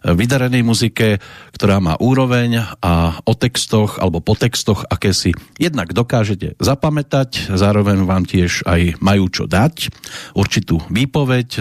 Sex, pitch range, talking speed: male, 95-120 Hz, 130 wpm